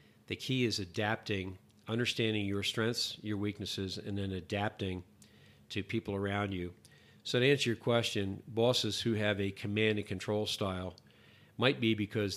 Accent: American